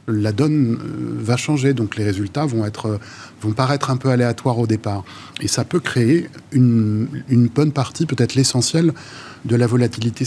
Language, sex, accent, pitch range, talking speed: French, male, French, 110-135 Hz, 170 wpm